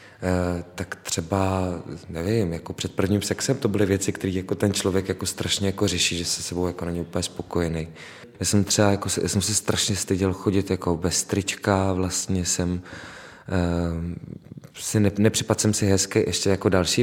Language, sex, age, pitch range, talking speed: Czech, male, 20-39, 95-105 Hz, 175 wpm